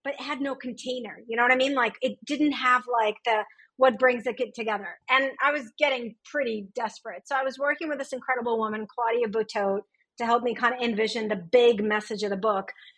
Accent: American